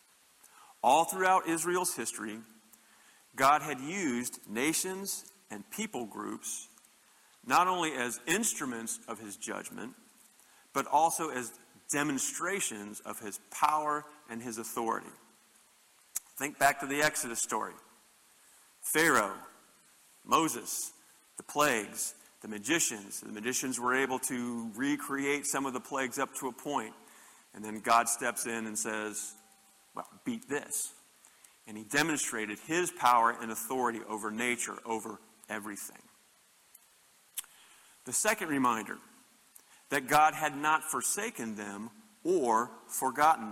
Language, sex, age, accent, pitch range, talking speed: English, male, 40-59, American, 115-160 Hz, 120 wpm